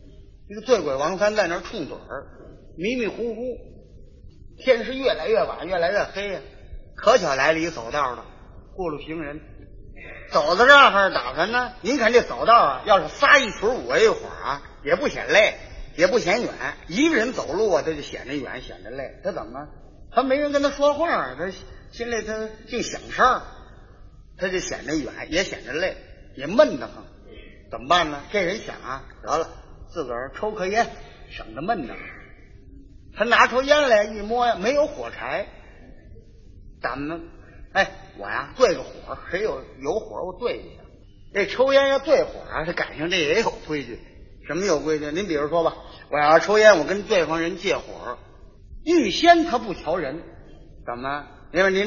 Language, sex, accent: Chinese, male, native